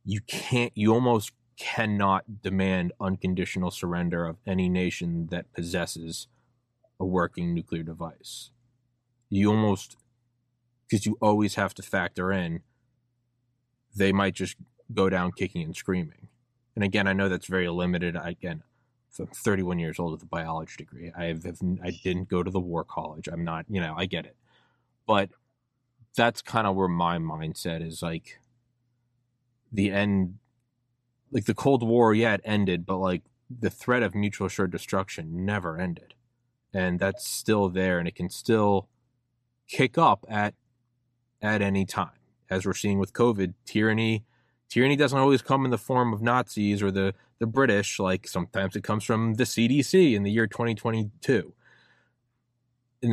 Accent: American